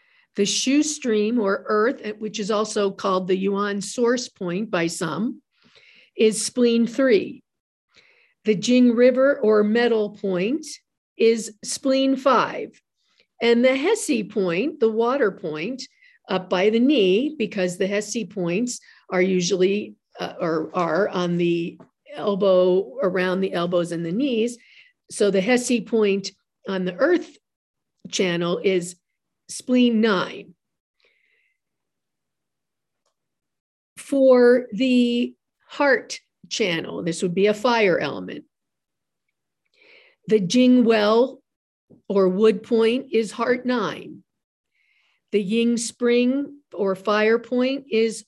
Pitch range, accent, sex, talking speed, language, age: 200-255 Hz, American, female, 115 wpm, English, 50-69